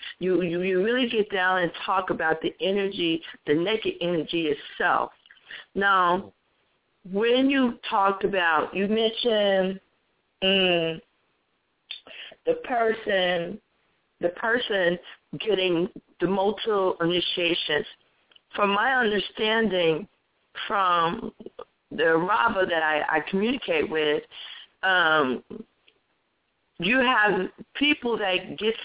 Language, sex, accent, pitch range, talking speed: English, female, American, 170-220 Hz, 100 wpm